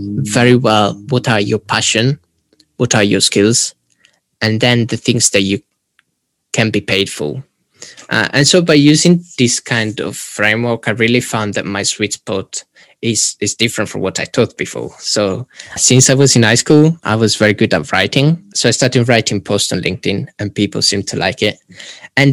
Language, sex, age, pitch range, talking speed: English, male, 10-29, 105-125 Hz, 190 wpm